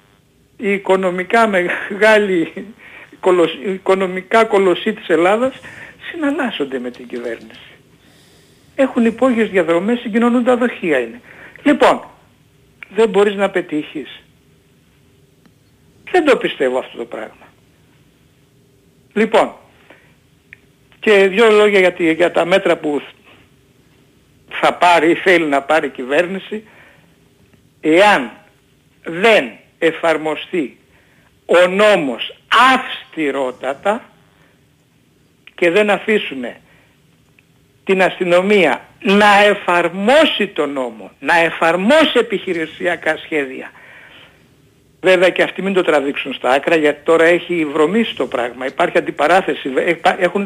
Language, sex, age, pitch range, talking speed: Greek, male, 60-79, 160-210 Hz, 100 wpm